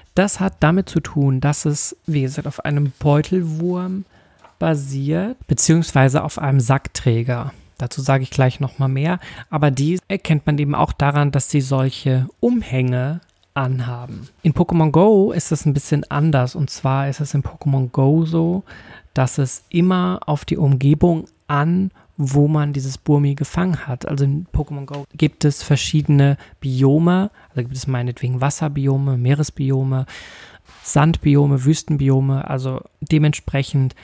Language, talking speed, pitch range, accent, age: German, 145 wpm, 135-155 Hz, German, 40-59